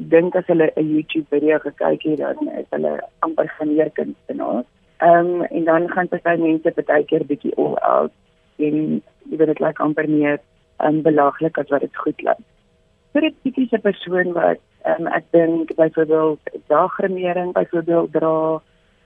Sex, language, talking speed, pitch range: female, Dutch, 150 wpm, 155-185 Hz